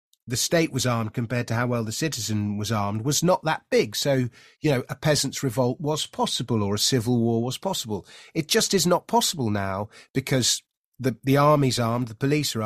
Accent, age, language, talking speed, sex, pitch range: British, 30-49, English, 210 wpm, male, 125-160 Hz